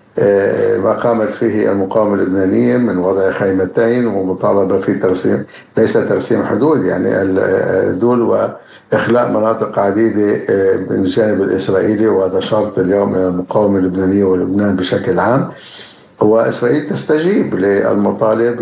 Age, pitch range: 60-79, 95-130 Hz